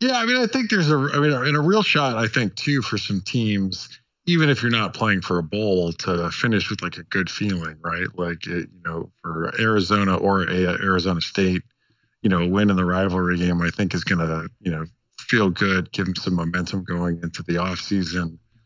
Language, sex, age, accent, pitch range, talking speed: English, male, 50-69, American, 95-125 Hz, 230 wpm